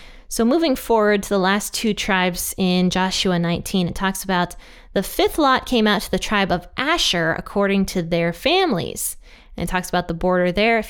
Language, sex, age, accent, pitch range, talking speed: English, female, 20-39, American, 180-220 Hz, 200 wpm